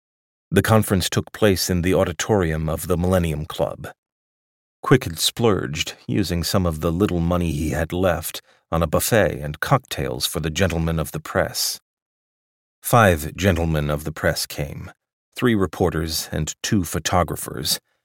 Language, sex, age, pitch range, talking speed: English, male, 30-49, 80-100 Hz, 150 wpm